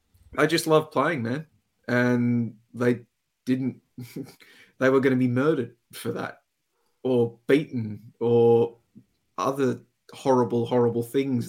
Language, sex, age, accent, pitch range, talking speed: English, male, 30-49, Australian, 115-125 Hz, 120 wpm